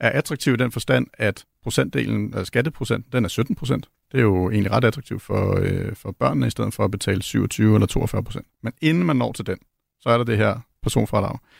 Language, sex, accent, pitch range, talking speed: Danish, male, native, 100-125 Hz, 230 wpm